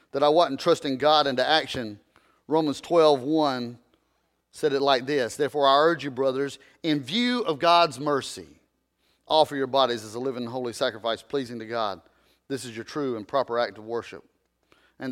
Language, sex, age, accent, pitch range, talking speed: English, male, 40-59, American, 135-195 Hz, 180 wpm